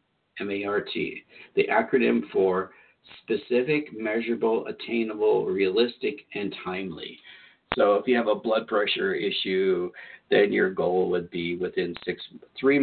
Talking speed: 120 wpm